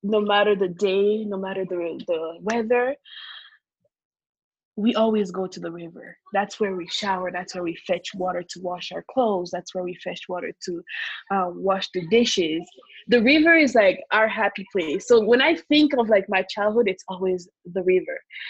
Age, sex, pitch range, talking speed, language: 20-39, female, 195-255 Hz, 185 wpm, English